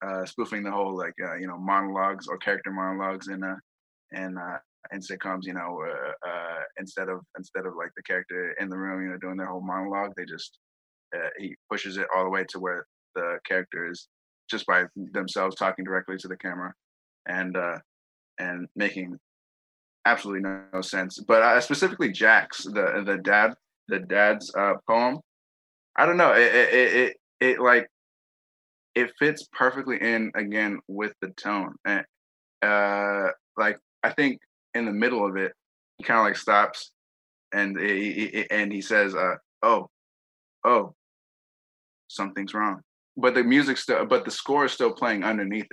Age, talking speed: 20-39, 175 wpm